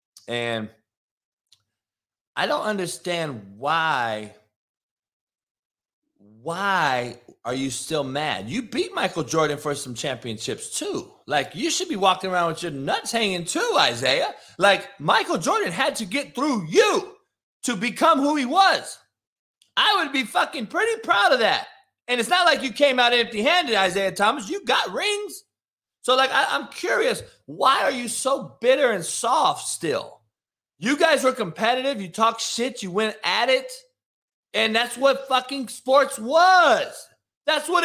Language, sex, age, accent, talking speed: English, male, 30-49, American, 150 wpm